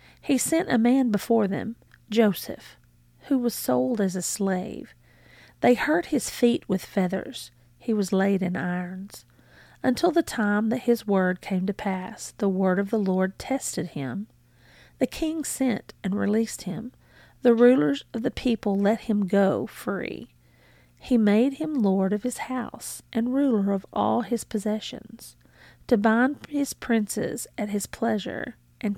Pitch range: 190-240 Hz